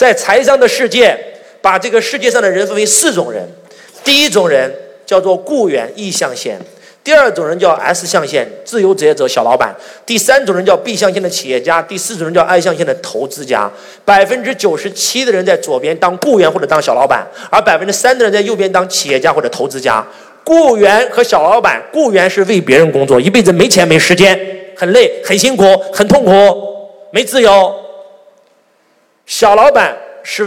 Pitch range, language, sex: 185-245 Hz, Chinese, male